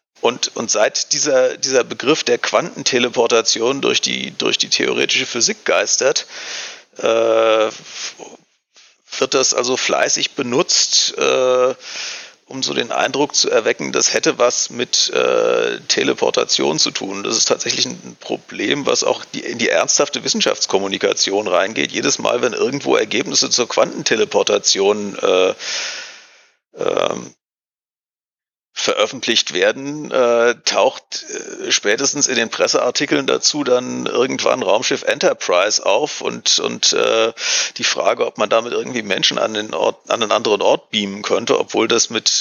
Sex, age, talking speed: male, 40-59, 135 wpm